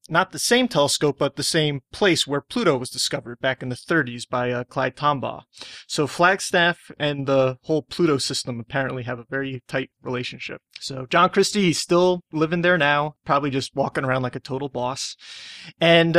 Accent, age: American, 30-49